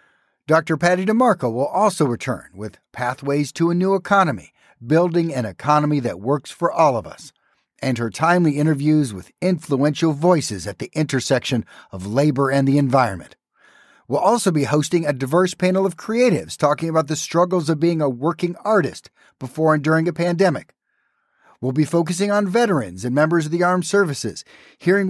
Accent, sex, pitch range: American, male, 135-180 Hz